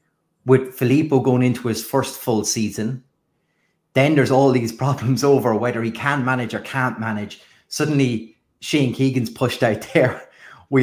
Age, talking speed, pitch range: 30-49, 155 wpm, 110-130 Hz